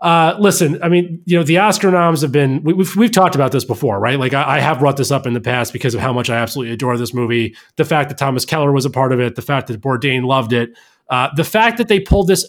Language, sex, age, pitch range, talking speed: English, male, 30-49, 130-165 Hz, 295 wpm